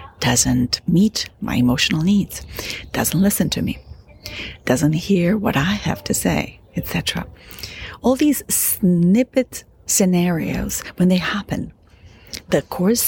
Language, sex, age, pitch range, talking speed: English, female, 40-59, 135-200 Hz, 120 wpm